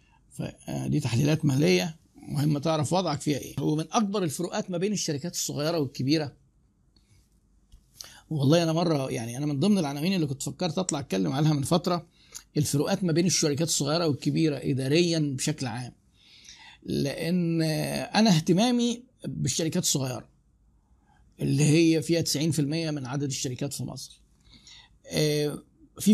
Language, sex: Arabic, male